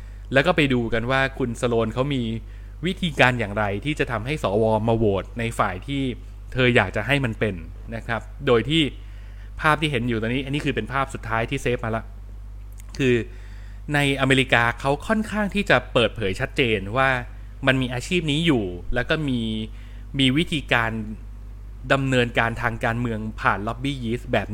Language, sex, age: Thai, male, 20-39